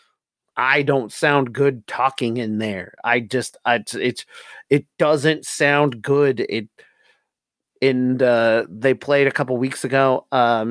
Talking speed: 140 wpm